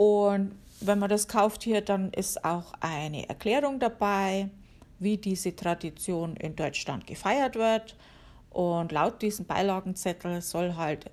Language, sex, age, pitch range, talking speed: German, female, 50-69, 180-220 Hz, 135 wpm